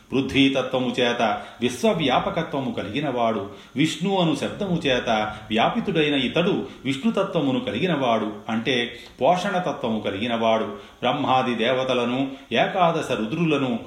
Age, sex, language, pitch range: 30-49, male, Telugu, 110-160 Hz